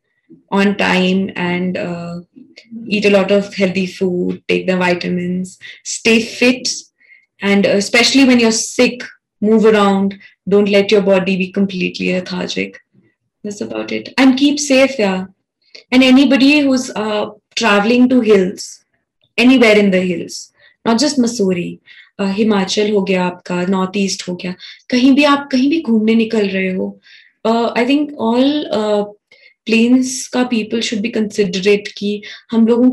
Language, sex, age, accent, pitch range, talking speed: Hindi, female, 20-39, native, 195-235 Hz, 145 wpm